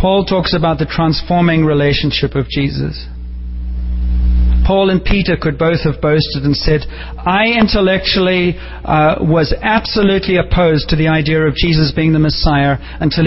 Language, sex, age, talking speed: English, male, 40-59, 145 wpm